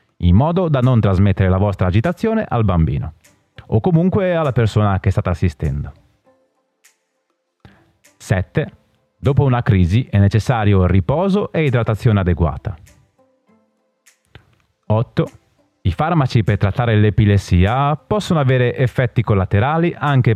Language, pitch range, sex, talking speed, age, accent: Italian, 100-135 Hz, male, 110 wpm, 30-49, native